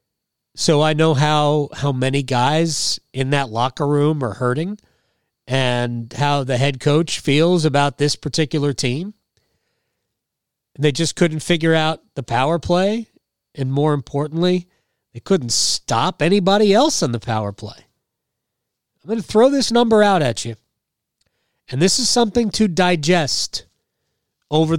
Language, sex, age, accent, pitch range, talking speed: English, male, 40-59, American, 130-175 Hz, 145 wpm